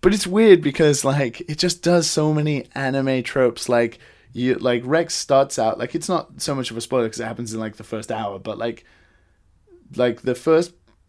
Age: 20-39